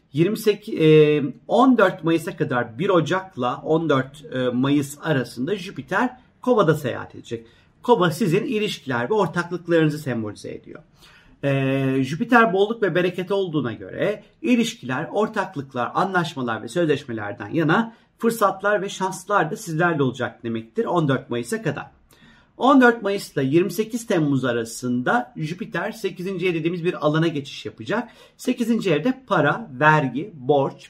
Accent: native